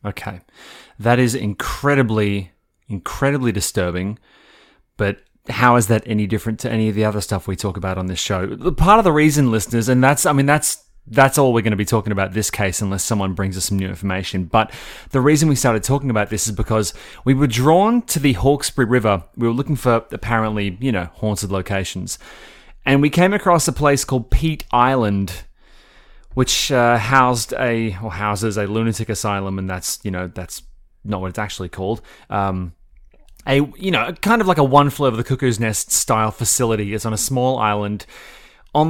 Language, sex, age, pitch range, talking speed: English, male, 30-49, 105-135 Hz, 195 wpm